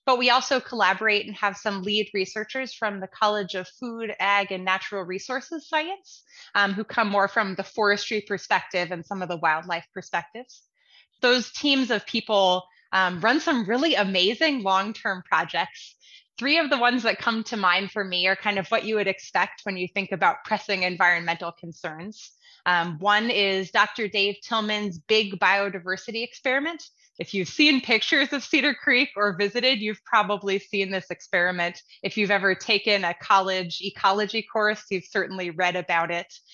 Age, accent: 20-39, American